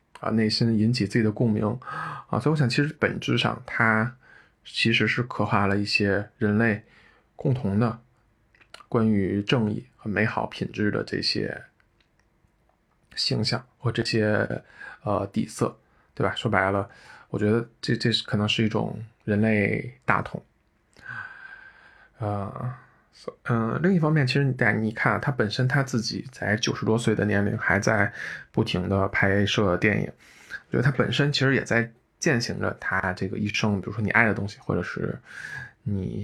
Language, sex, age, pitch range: Chinese, male, 20-39, 105-125 Hz